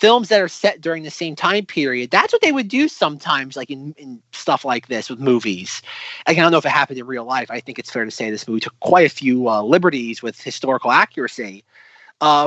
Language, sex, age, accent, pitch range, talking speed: English, male, 30-49, American, 140-175 Hz, 240 wpm